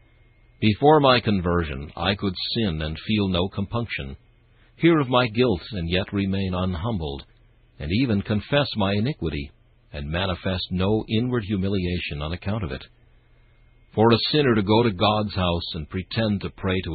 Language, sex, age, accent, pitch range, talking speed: English, male, 60-79, American, 90-115 Hz, 160 wpm